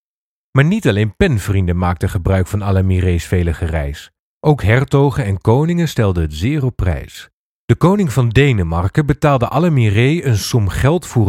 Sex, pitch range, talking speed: male, 95-145 Hz, 155 wpm